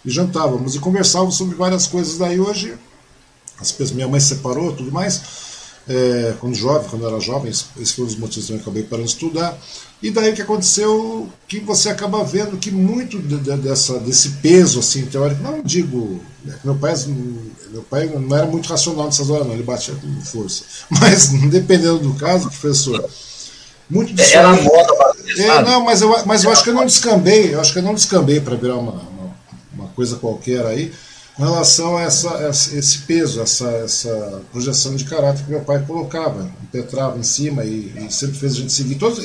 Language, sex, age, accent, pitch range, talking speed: Portuguese, male, 50-69, Brazilian, 125-180 Hz, 190 wpm